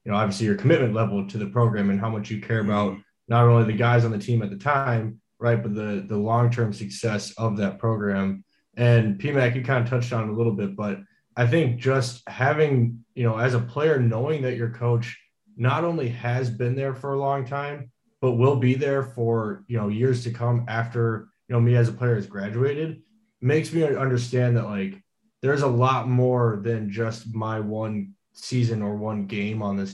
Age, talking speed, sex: 20-39, 210 wpm, male